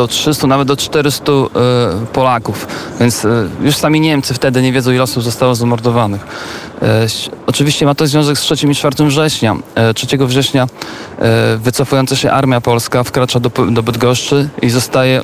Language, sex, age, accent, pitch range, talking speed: Polish, male, 40-59, native, 120-140 Hz, 170 wpm